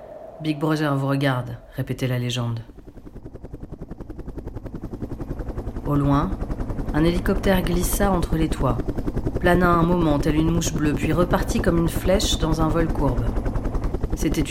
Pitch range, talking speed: 130-180 Hz, 130 wpm